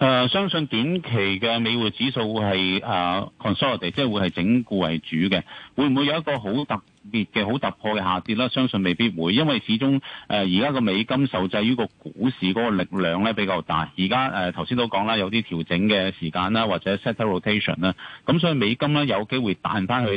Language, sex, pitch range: Chinese, male, 95-130 Hz